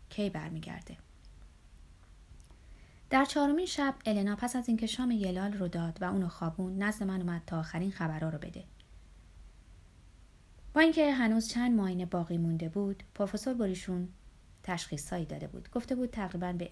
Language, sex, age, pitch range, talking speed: Persian, female, 30-49, 165-210 Hz, 145 wpm